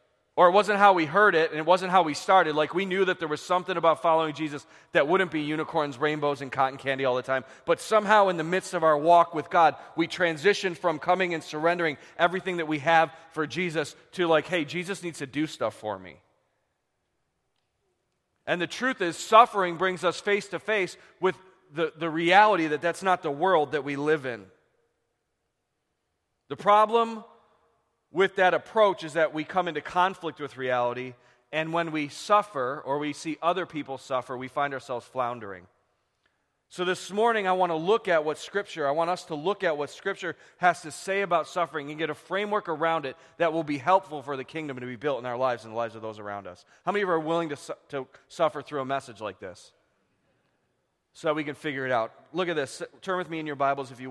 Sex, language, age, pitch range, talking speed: male, English, 40-59, 140-180 Hz, 215 wpm